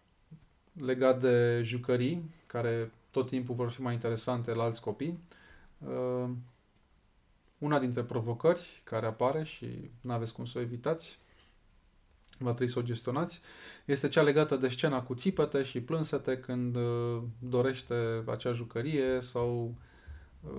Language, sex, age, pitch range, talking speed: Romanian, male, 20-39, 115-145 Hz, 130 wpm